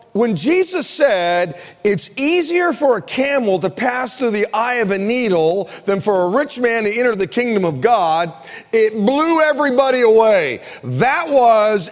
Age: 40-59